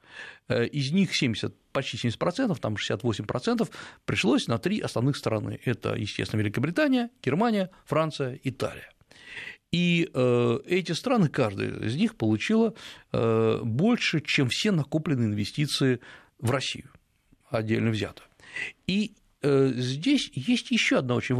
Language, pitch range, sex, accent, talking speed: Russian, 120-185 Hz, male, native, 110 wpm